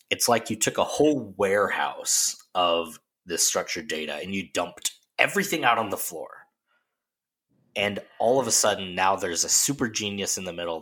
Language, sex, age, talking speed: English, male, 20-39, 175 wpm